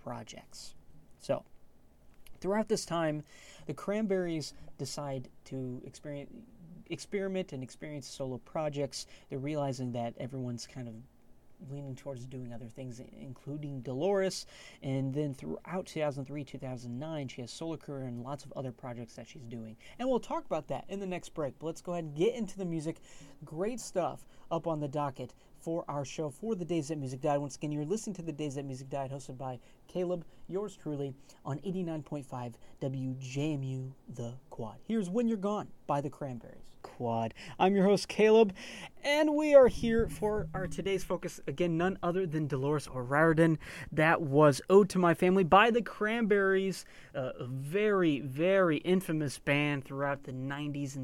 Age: 30-49